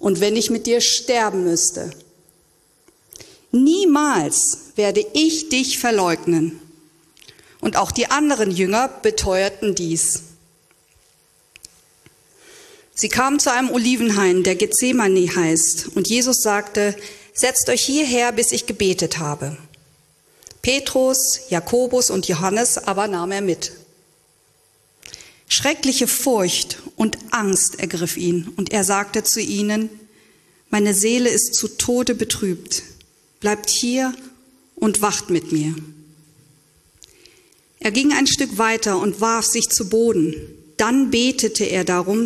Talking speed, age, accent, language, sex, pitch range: 115 wpm, 50-69, German, German, female, 175-245 Hz